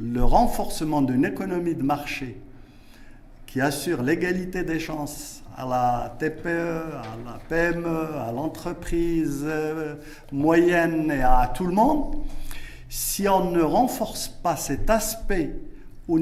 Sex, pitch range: male, 130-200 Hz